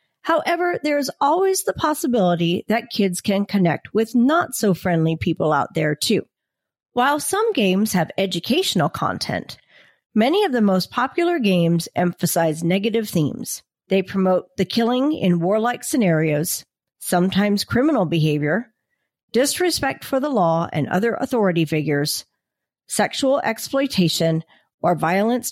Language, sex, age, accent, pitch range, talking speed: English, female, 40-59, American, 170-240 Hz, 120 wpm